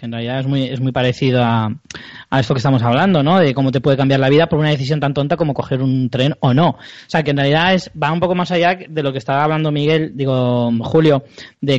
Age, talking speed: 20-39, 270 wpm